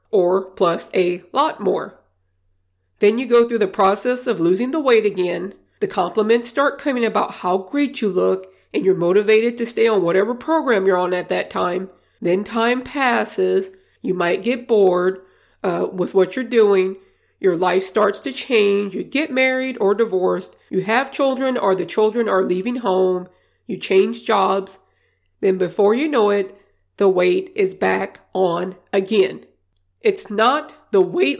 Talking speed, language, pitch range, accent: 165 wpm, English, 190-255 Hz, American